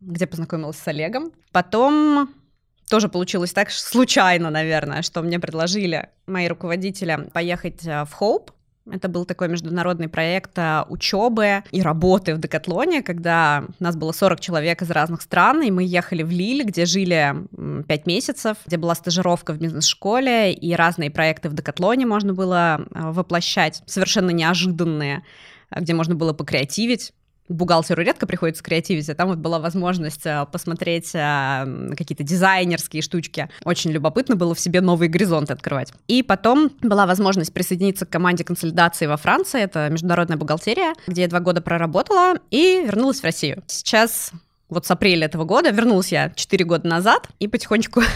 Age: 20-39